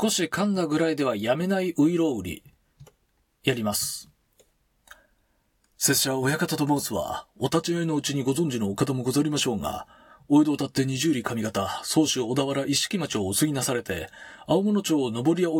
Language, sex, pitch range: Japanese, male, 125-165 Hz